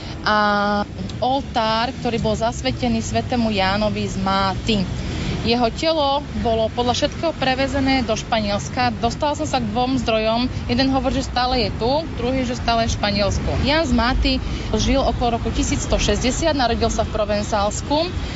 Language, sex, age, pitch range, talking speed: Slovak, female, 30-49, 215-250 Hz, 145 wpm